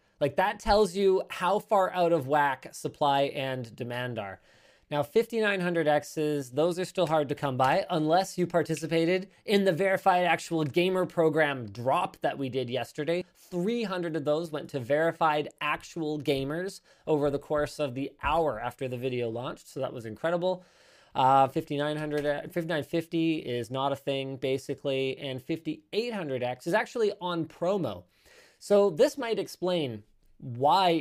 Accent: American